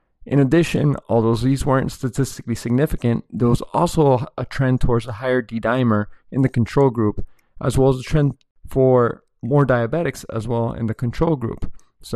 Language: English